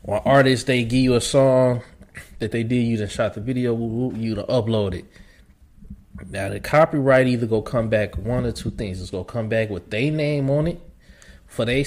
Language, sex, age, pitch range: English, male, 20-39, 105-150 Hz